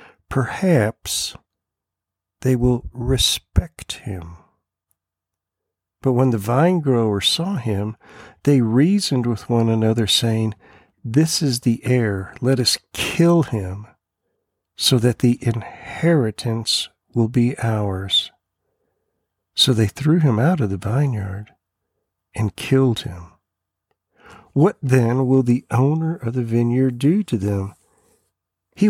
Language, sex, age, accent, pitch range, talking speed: English, male, 50-69, American, 105-140 Hz, 115 wpm